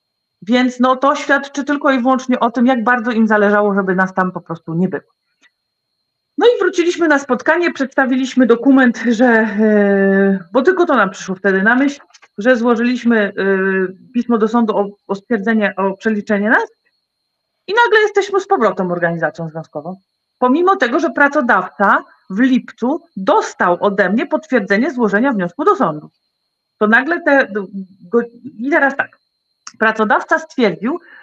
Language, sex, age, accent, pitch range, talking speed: Polish, female, 40-59, native, 200-265 Hz, 145 wpm